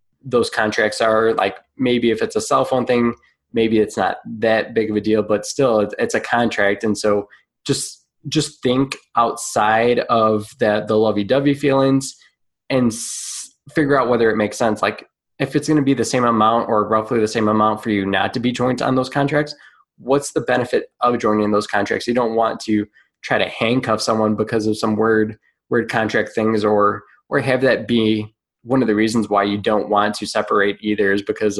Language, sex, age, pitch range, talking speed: English, male, 20-39, 105-125 Hz, 200 wpm